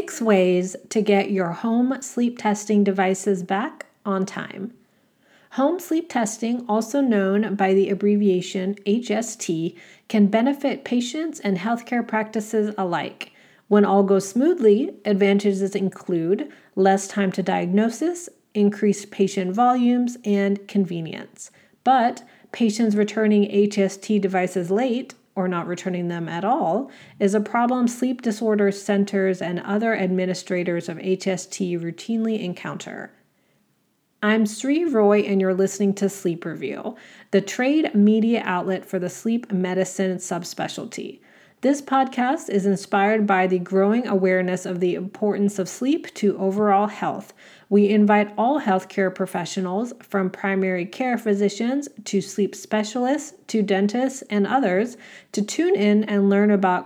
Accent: American